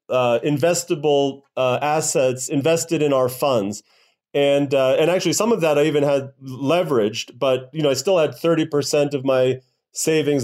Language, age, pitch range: English, 40-59, 140-175 Hz